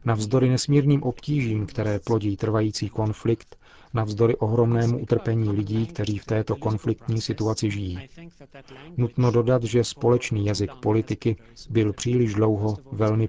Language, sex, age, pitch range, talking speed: Czech, male, 40-59, 105-125 Hz, 120 wpm